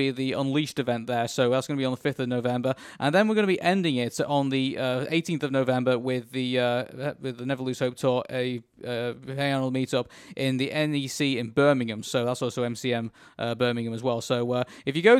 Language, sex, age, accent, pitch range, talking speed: English, male, 20-39, British, 120-155 Hz, 235 wpm